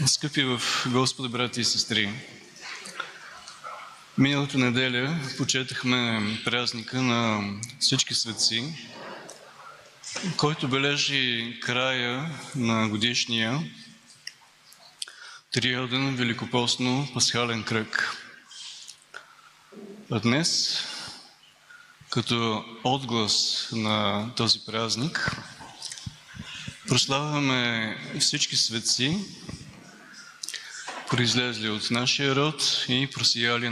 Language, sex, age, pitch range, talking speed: Bulgarian, male, 20-39, 115-135 Hz, 65 wpm